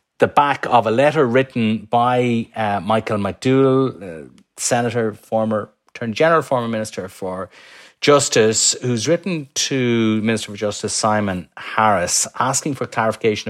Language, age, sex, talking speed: English, 30-49, male, 135 wpm